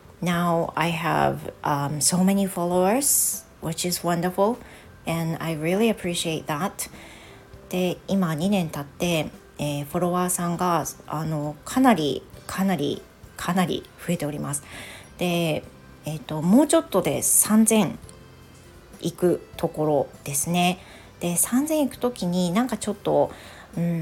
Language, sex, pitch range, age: Japanese, female, 155-195 Hz, 40-59